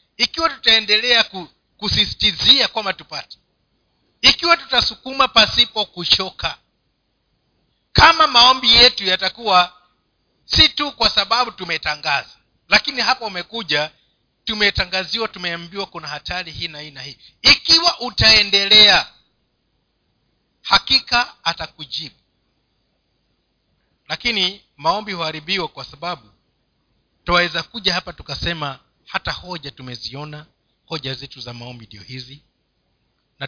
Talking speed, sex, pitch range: 95 wpm, male, 150-230 Hz